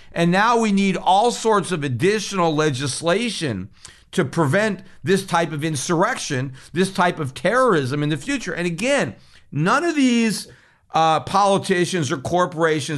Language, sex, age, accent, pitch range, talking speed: English, male, 50-69, American, 150-185 Hz, 145 wpm